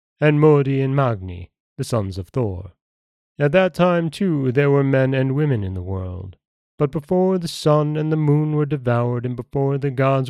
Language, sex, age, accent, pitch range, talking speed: English, male, 30-49, American, 110-145 Hz, 190 wpm